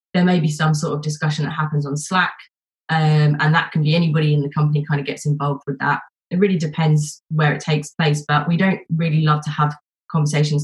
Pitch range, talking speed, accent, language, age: 145-160 Hz, 230 wpm, British, English, 20-39